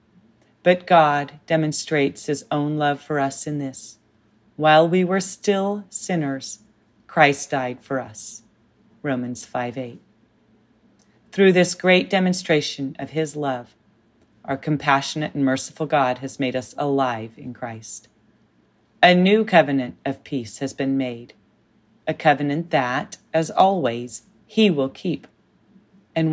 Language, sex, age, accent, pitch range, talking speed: English, female, 40-59, American, 125-160 Hz, 130 wpm